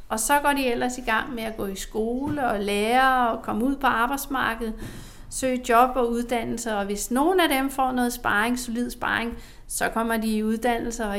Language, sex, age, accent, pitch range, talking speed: Danish, female, 40-59, native, 210-245 Hz, 210 wpm